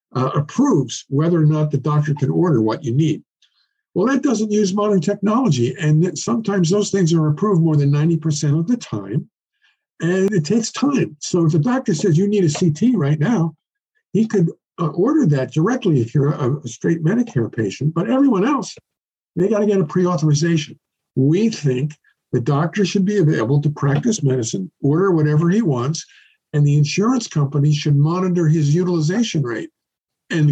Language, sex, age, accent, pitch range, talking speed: English, male, 50-69, American, 145-190 Hz, 180 wpm